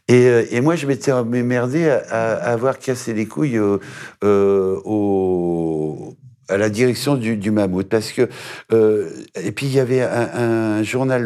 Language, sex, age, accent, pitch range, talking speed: French, male, 60-79, French, 100-135 Hz, 175 wpm